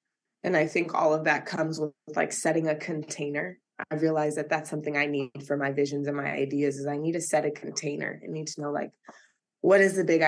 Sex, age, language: female, 20-39, English